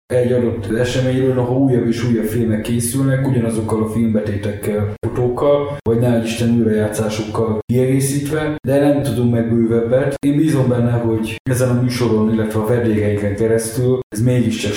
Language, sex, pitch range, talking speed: Hungarian, male, 110-125 Hz, 140 wpm